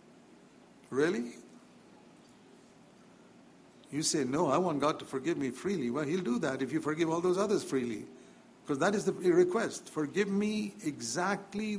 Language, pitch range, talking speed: English, 145-190 Hz, 155 wpm